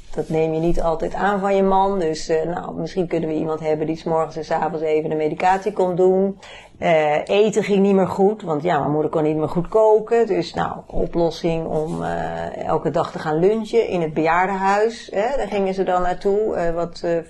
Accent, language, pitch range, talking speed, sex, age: Dutch, Dutch, 155-185 Hz, 225 wpm, female, 40-59